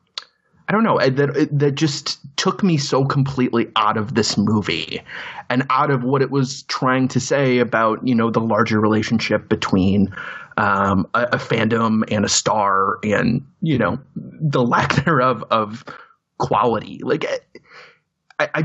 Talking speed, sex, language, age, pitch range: 155 wpm, male, English, 30-49, 115-140 Hz